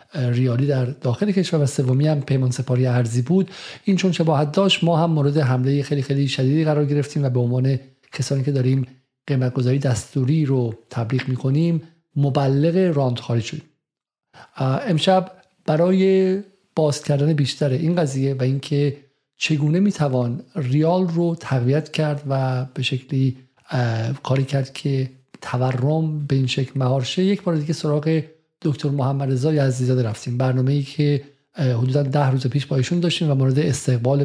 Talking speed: 160 wpm